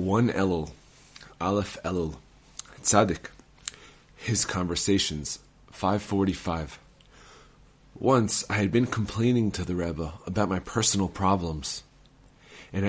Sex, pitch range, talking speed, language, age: male, 85-110 Hz, 100 wpm, English, 30-49